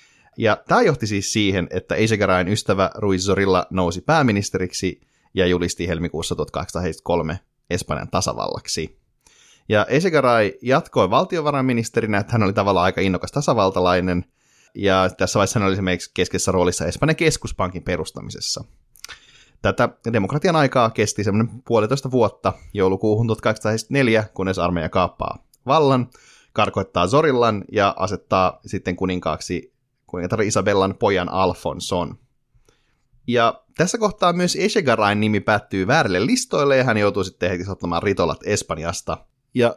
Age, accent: 30-49, native